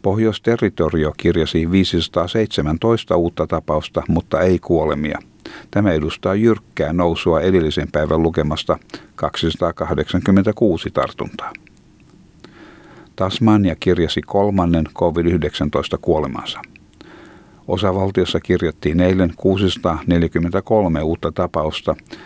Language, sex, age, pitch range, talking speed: Finnish, male, 60-79, 80-100 Hz, 75 wpm